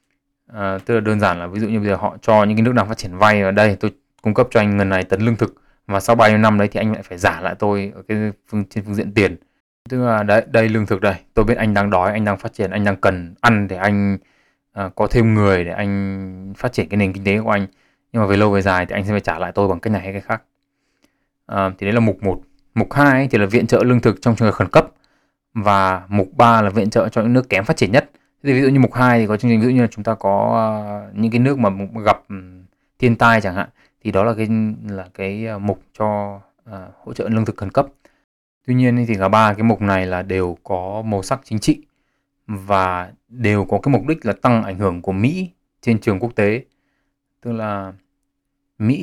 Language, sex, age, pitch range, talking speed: Vietnamese, male, 20-39, 100-120 Hz, 260 wpm